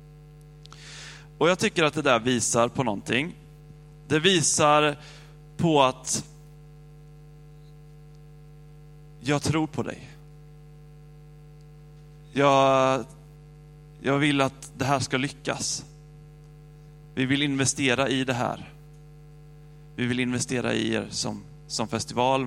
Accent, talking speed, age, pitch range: native, 105 wpm, 30-49, 120-150 Hz